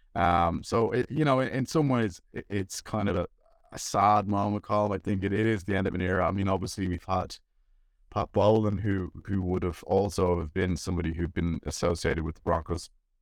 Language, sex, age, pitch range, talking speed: English, male, 30-49, 85-95 Hz, 220 wpm